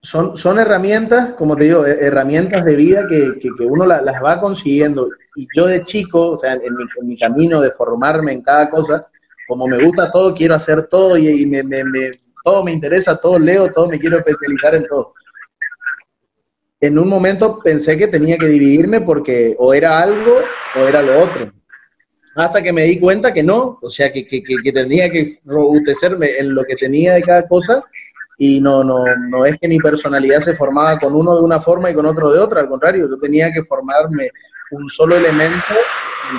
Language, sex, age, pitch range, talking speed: Spanish, male, 30-49, 140-175 Hz, 205 wpm